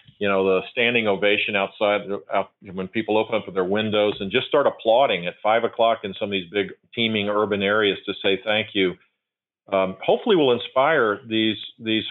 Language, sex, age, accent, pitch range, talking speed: English, male, 40-59, American, 100-120 Hz, 190 wpm